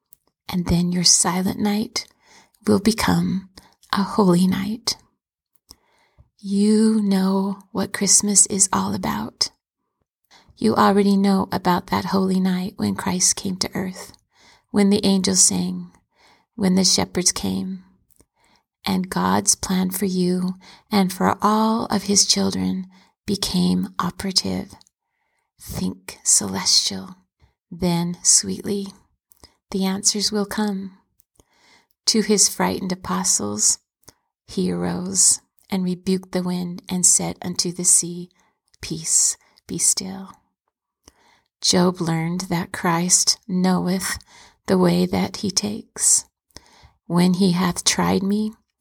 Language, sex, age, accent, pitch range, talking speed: English, female, 30-49, American, 180-200 Hz, 110 wpm